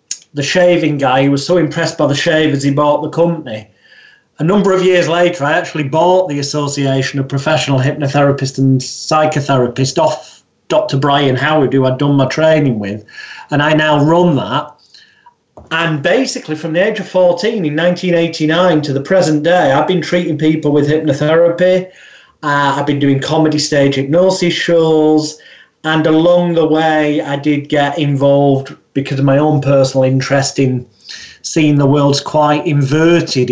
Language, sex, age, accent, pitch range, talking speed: English, male, 30-49, British, 140-165 Hz, 165 wpm